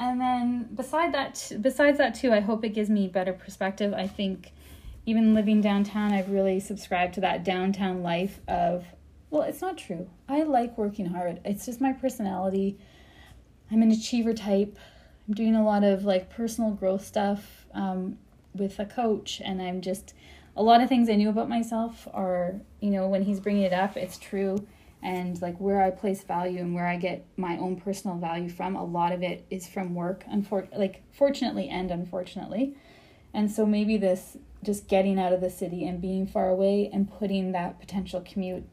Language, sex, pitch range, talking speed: English, female, 185-215 Hz, 190 wpm